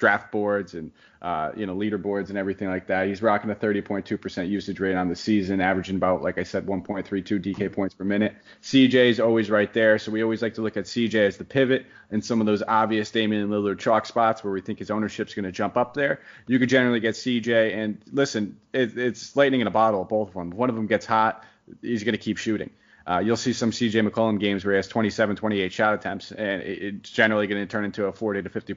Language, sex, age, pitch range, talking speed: English, male, 30-49, 105-115 Hz, 245 wpm